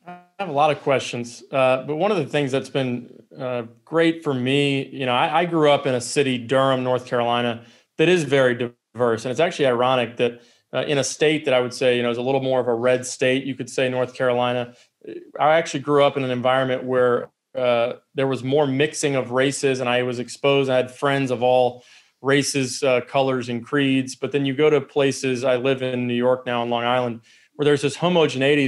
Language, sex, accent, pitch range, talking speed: English, male, American, 125-140 Hz, 230 wpm